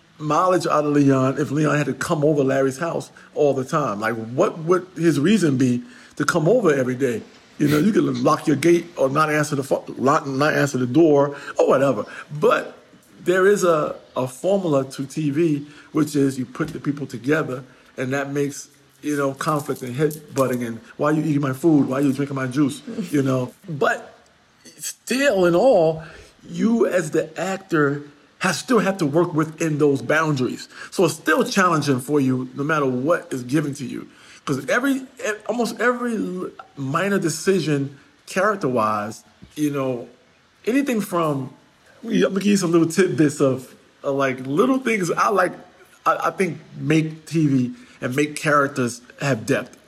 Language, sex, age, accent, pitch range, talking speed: English, male, 50-69, American, 135-170 Hz, 175 wpm